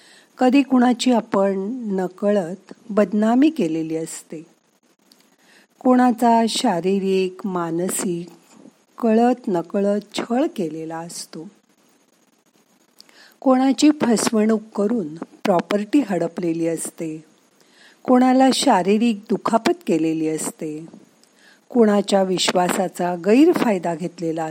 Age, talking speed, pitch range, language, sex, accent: 50-69, 75 wpm, 185-250 Hz, Marathi, female, native